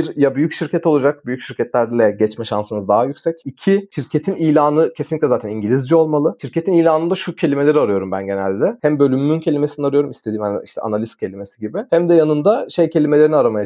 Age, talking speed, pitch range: 40-59, 180 wpm, 115-155 Hz